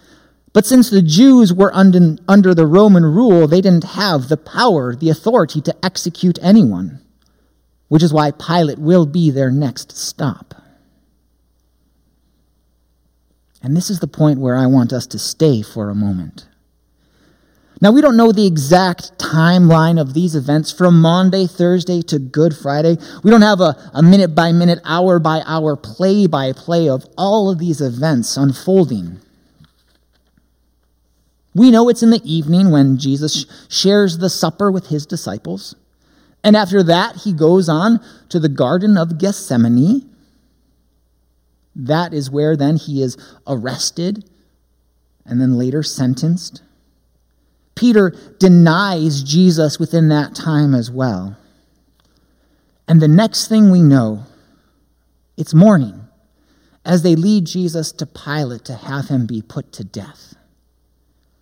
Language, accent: English, American